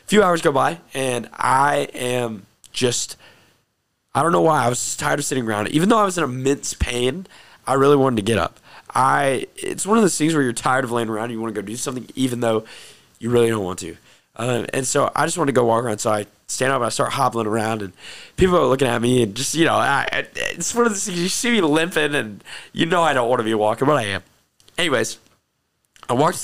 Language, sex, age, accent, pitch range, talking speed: English, male, 20-39, American, 115-160 Hz, 245 wpm